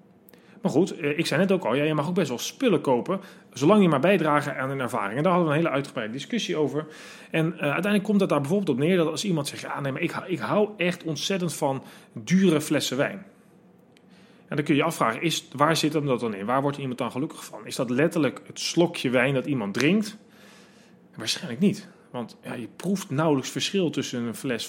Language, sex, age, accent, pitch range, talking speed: Dutch, male, 30-49, Dutch, 130-185 Hz, 215 wpm